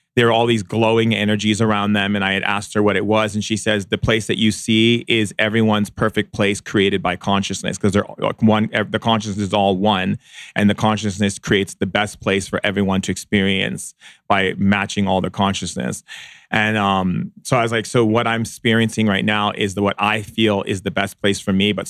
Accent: American